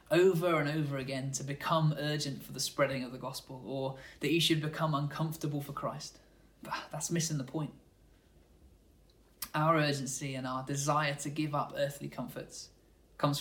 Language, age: English, 20-39